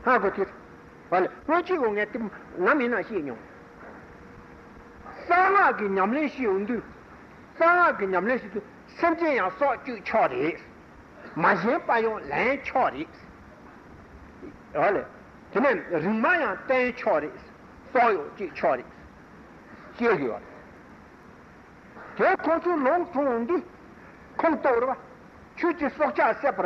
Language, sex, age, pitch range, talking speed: Italian, male, 60-79, 230-335 Hz, 105 wpm